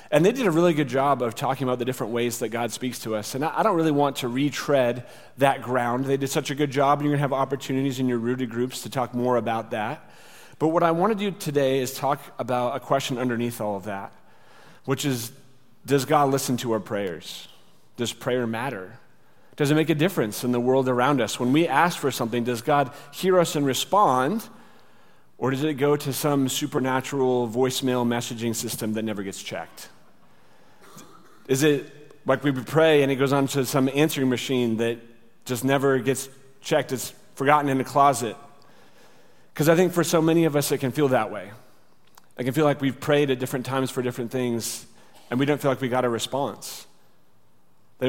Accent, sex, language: American, male, English